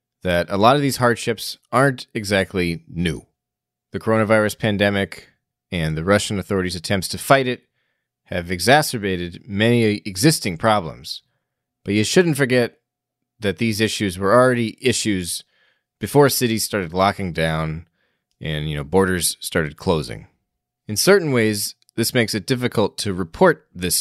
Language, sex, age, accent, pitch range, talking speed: English, male, 30-49, American, 85-120 Hz, 140 wpm